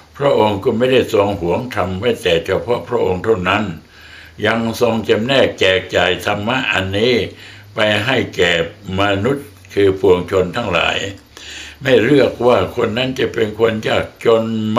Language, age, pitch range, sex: Thai, 60-79, 95-130 Hz, male